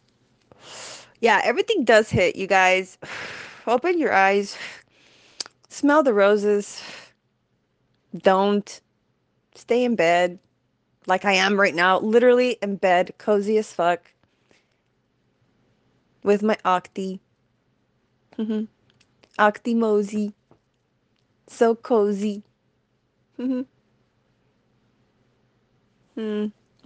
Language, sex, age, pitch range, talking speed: English, female, 20-39, 200-275 Hz, 80 wpm